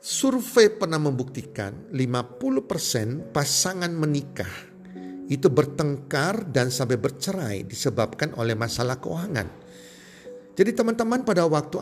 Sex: male